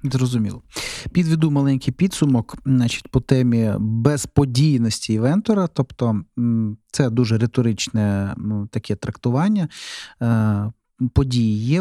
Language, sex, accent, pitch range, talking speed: Ukrainian, male, native, 110-135 Hz, 85 wpm